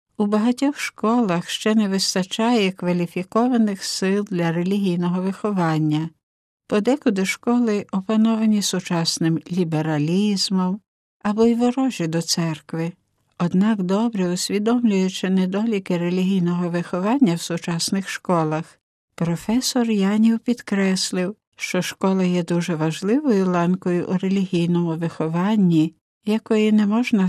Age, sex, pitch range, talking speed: 60-79, female, 165-205 Hz, 100 wpm